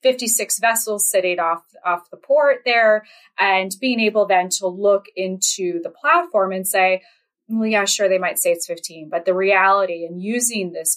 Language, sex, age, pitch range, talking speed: English, female, 20-39, 180-230 Hz, 180 wpm